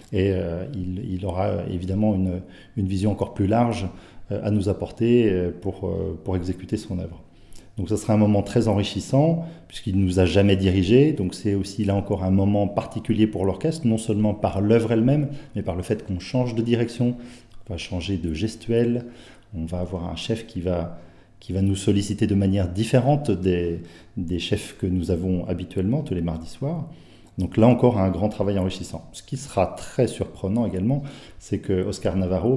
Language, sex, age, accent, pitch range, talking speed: French, male, 40-59, French, 95-115 Hz, 195 wpm